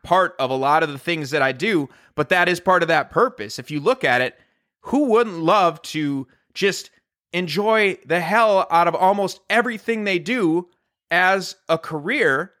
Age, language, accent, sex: 30-49, English, American, male